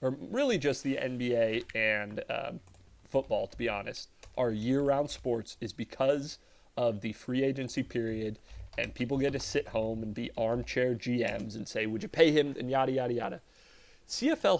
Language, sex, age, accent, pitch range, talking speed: English, male, 30-49, American, 115-135 Hz, 175 wpm